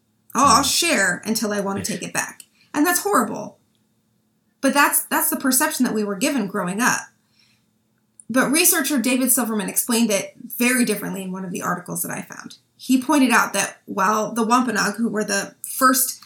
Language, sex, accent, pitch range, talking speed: English, female, American, 210-260 Hz, 190 wpm